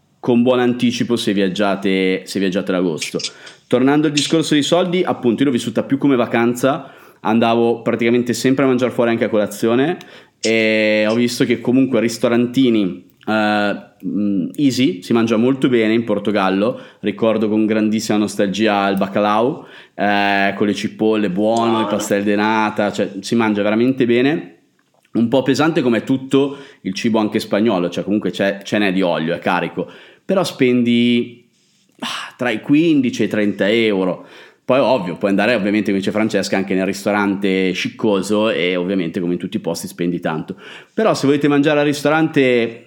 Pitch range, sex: 100-125 Hz, male